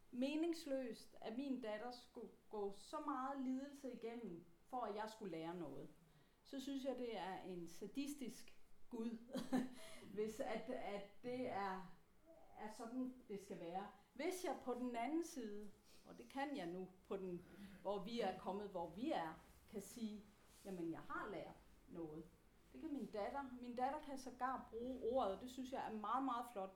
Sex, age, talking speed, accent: female, 40-59, 175 wpm, native